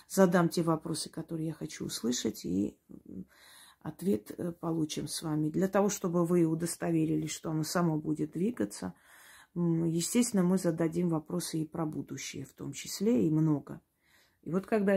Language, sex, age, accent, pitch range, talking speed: Russian, female, 30-49, native, 155-185 Hz, 150 wpm